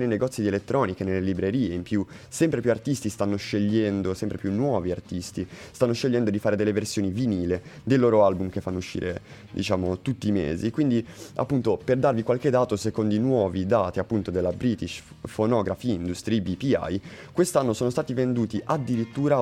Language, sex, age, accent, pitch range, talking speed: Italian, male, 20-39, native, 100-130 Hz, 170 wpm